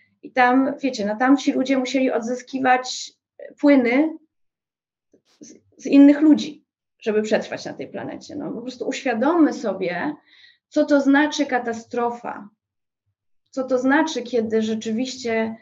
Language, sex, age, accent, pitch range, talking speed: English, female, 20-39, Polish, 215-255 Hz, 125 wpm